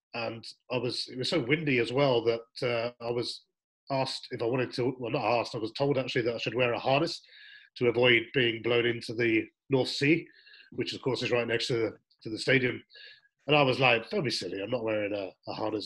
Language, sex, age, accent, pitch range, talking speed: English, male, 40-59, British, 115-145 Hz, 240 wpm